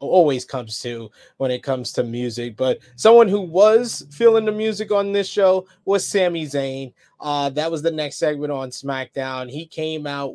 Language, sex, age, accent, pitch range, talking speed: English, male, 20-39, American, 135-155 Hz, 185 wpm